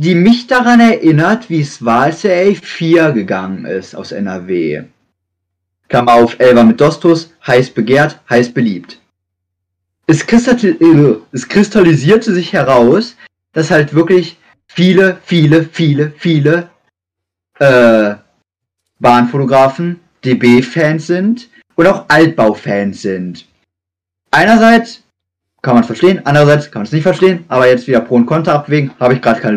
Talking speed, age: 130 wpm, 30-49